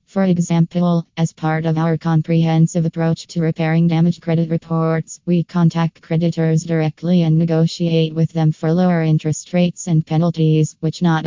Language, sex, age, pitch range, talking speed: English, female, 20-39, 160-170 Hz, 155 wpm